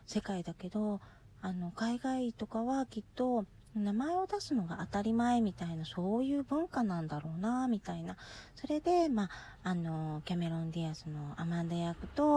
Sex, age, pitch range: female, 40-59, 170-225 Hz